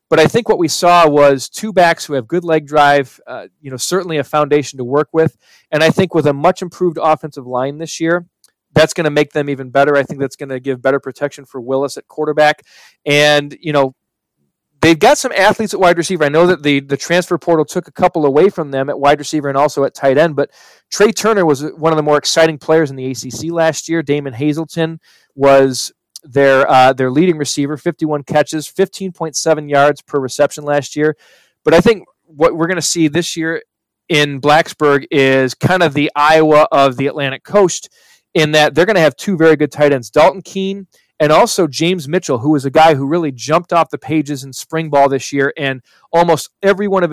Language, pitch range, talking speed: English, 140-170 Hz, 220 wpm